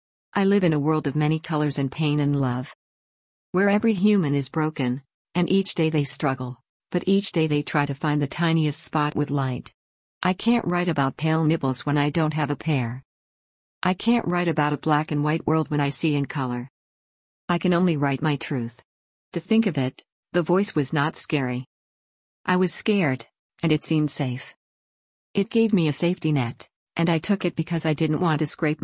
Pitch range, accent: 140-170 Hz, American